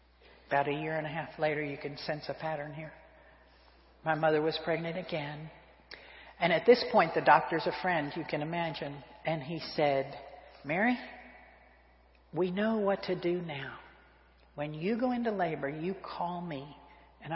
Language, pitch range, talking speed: English, 140-165 Hz, 165 wpm